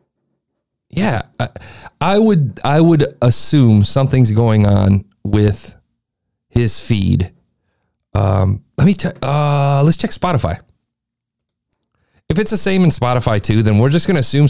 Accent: American